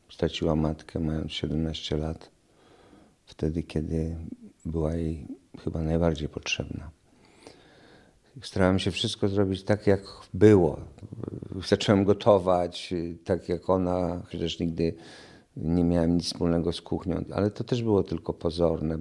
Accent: native